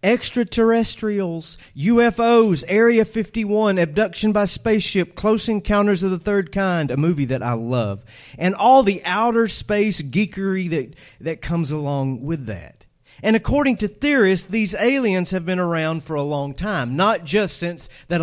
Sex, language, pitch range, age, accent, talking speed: male, English, 135-205 Hz, 40-59, American, 155 wpm